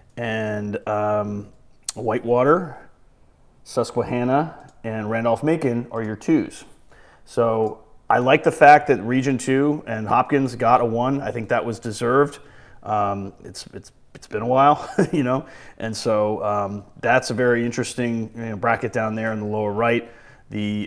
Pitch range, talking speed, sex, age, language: 110-130 Hz, 150 wpm, male, 30-49, English